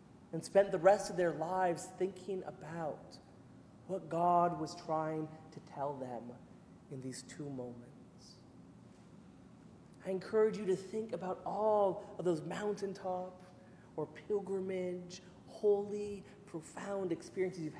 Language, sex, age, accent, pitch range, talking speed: English, male, 30-49, American, 155-200 Hz, 120 wpm